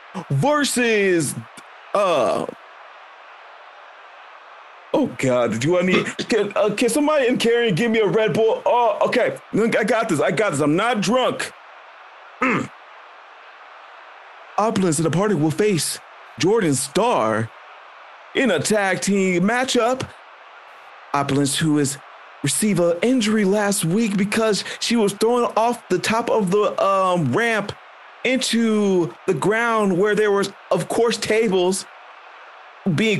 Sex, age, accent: male, 40-59, American